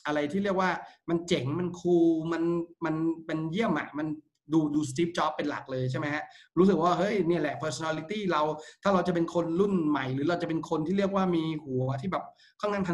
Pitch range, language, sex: 145-180 Hz, Thai, male